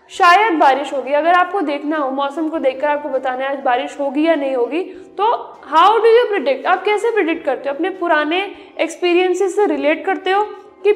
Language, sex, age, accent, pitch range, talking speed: Hindi, female, 20-39, native, 300-370 Hz, 195 wpm